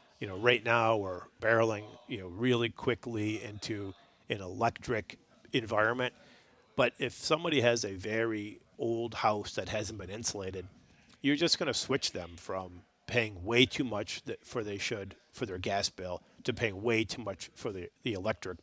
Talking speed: 165 wpm